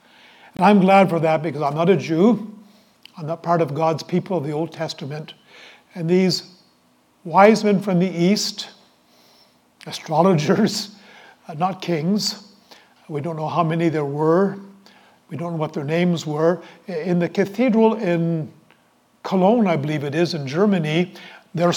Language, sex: English, male